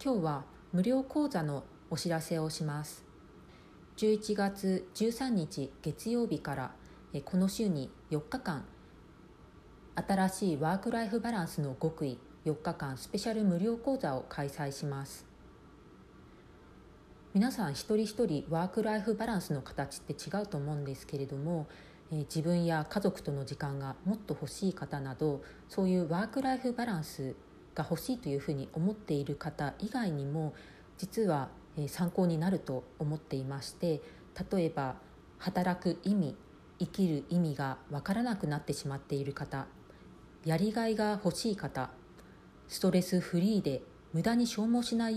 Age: 40-59